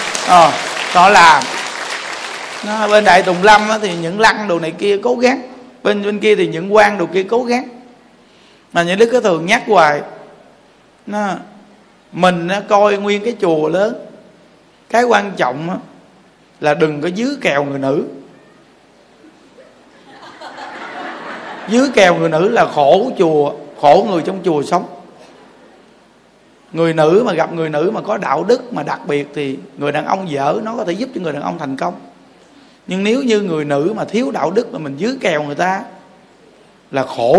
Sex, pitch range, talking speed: male, 180-245 Hz, 175 wpm